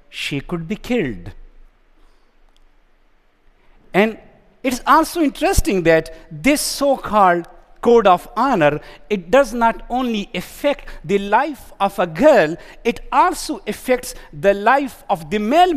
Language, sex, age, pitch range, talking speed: Arabic, male, 50-69, 170-260 Hz, 120 wpm